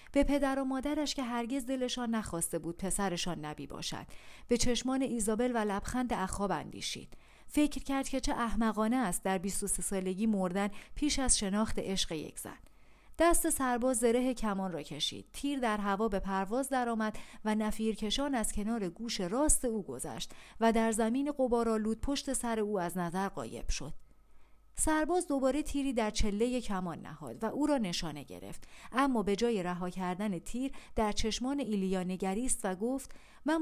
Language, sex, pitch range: Persian, female, 200-260 Hz